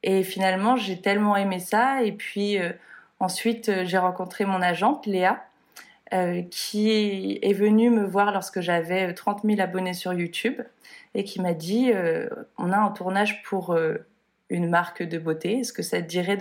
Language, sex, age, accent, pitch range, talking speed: French, female, 20-39, French, 180-210 Hz, 175 wpm